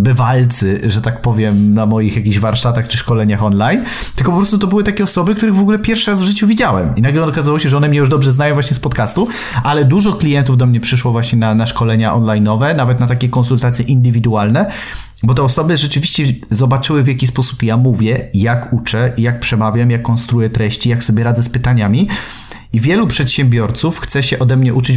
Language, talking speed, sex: Polish, 205 wpm, male